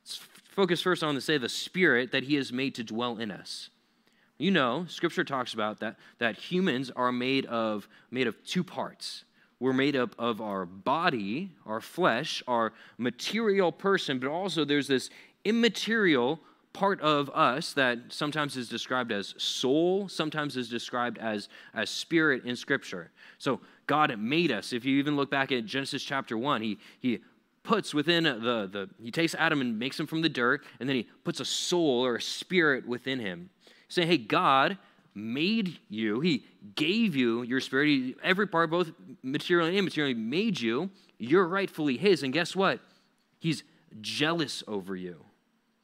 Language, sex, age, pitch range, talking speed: English, male, 20-39, 125-180 Hz, 170 wpm